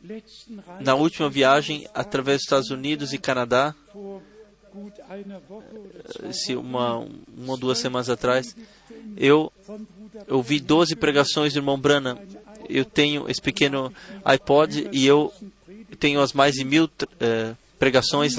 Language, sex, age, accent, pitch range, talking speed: Portuguese, male, 20-39, Brazilian, 140-205 Hz, 115 wpm